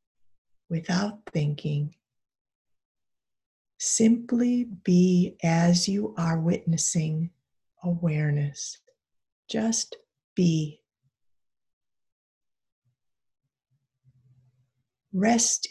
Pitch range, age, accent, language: 115-185 Hz, 40-59, American, English